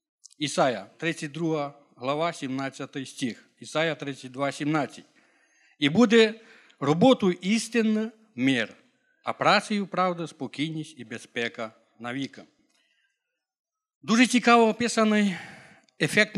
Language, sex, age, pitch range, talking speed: Ukrainian, male, 50-69, 145-215 Hz, 90 wpm